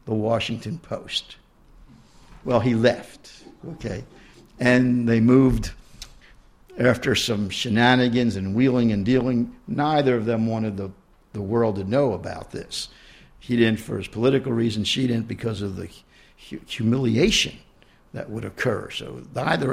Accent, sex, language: American, male, English